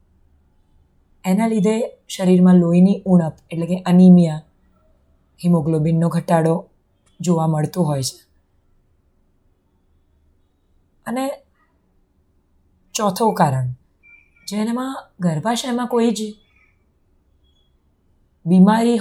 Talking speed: 70 wpm